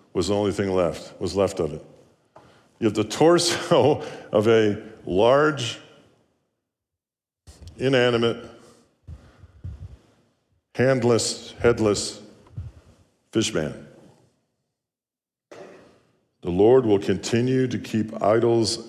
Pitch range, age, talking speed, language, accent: 95-115 Hz, 50-69, 90 wpm, English, American